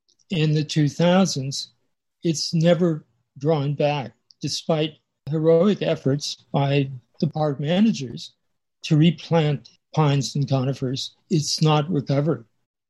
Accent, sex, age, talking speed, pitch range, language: American, male, 60-79, 100 wpm, 140-170 Hz, English